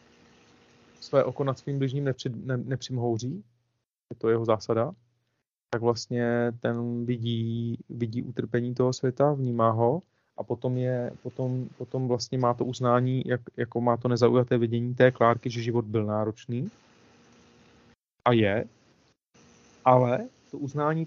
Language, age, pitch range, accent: Czech, 30-49, 120-150 Hz, native